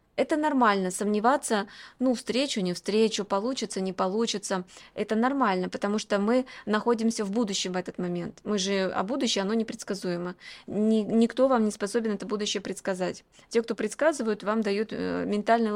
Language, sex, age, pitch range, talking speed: Russian, female, 20-39, 195-235 Hz, 155 wpm